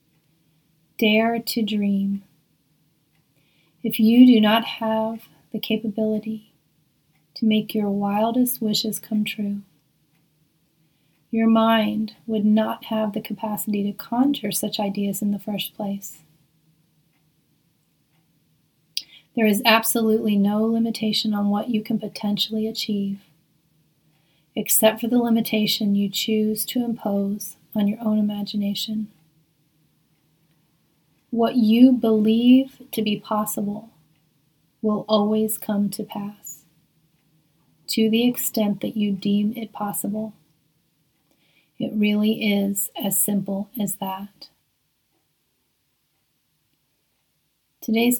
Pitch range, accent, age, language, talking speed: 160-220 Hz, American, 30-49, English, 100 wpm